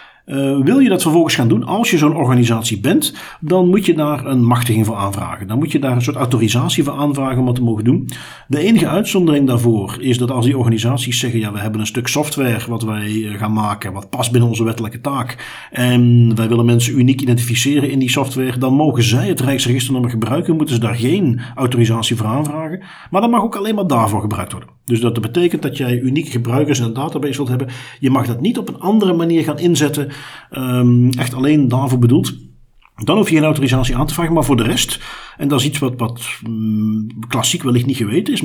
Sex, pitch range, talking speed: male, 115-150 Hz, 220 wpm